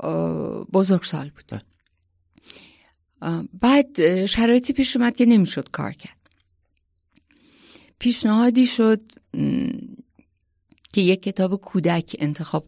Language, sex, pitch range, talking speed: Persian, female, 150-225 Hz, 80 wpm